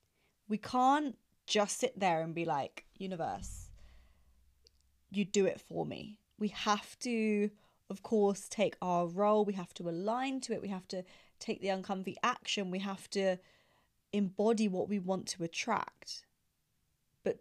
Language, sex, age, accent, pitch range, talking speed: English, female, 20-39, British, 175-210 Hz, 155 wpm